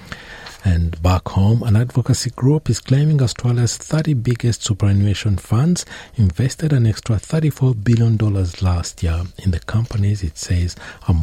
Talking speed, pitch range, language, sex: 140 wpm, 80-105 Hz, English, male